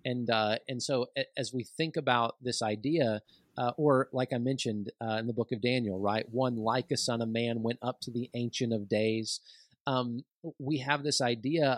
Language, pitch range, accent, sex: English, 115-140 Hz, American, male